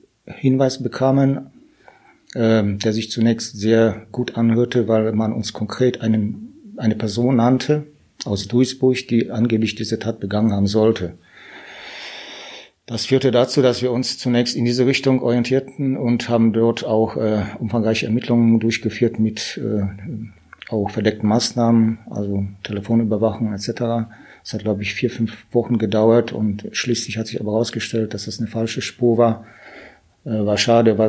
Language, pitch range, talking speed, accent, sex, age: German, 110-125 Hz, 140 wpm, German, male, 40-59